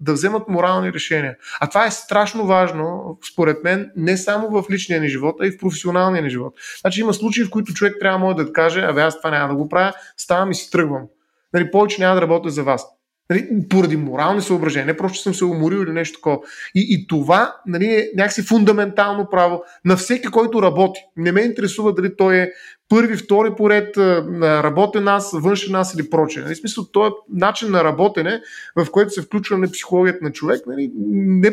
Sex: male